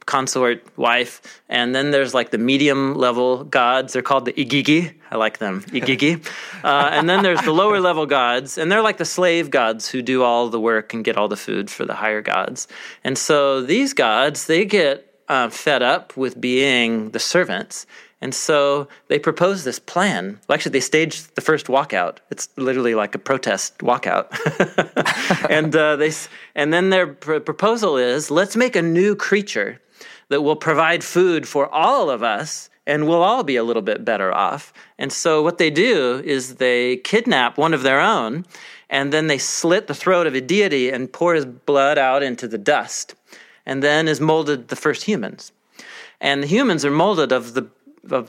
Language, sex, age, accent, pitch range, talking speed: English, male, 30-49, American, 125-170 Hz, 190 wpm